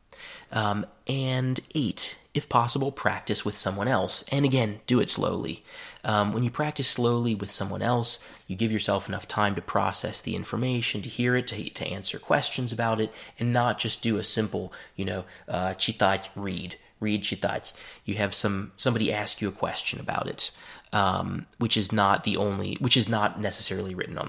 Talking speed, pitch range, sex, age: 185 wpm, 100-120 Hz, male, 20-39